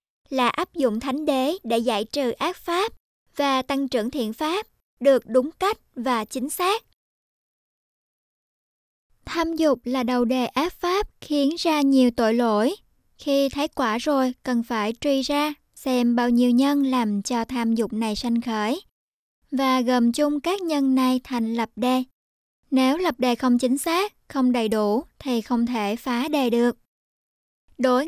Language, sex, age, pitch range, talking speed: Vietnamese, male, 20-39, 235-280 Hz, 165 wpm